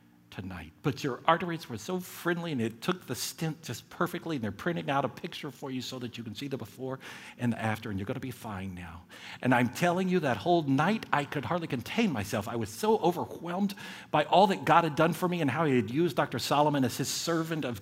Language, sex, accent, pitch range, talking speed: English, male, American, 125-180 Hz, 245 wpm